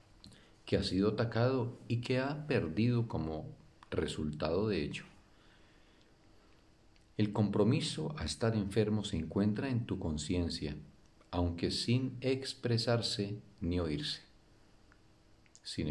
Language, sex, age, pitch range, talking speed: Spanish, male, 50-69, 95-115 Hz, 105 wpm